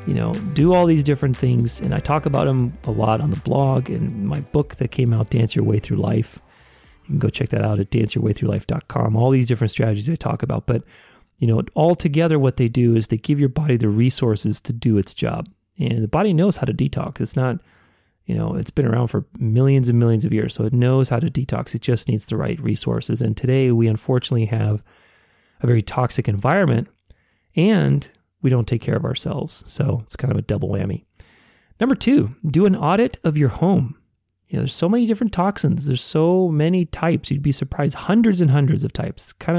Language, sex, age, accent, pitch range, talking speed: English, male, 30-49, American, 115-155 Hz, 220 wpm